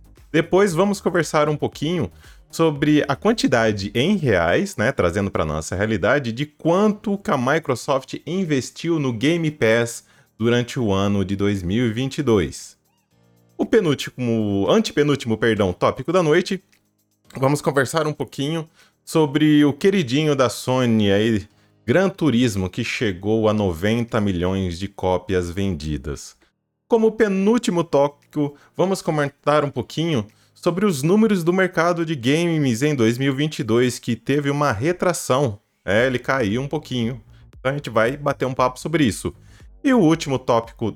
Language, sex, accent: Portuguese, male, Brazilian